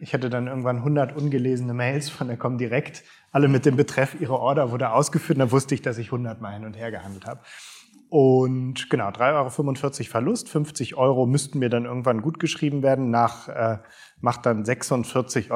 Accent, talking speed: German, 195 wpm